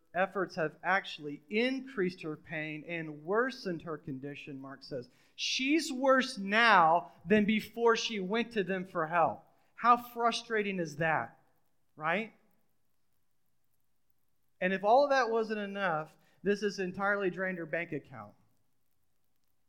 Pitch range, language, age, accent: 155-220 Hz, English, 30-49, American